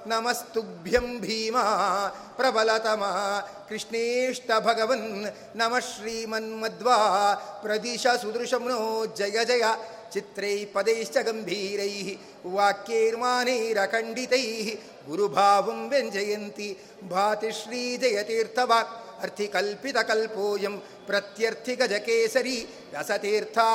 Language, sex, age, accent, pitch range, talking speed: Kannada, male, 50-69, native, 205-230 Hz, 55 wpm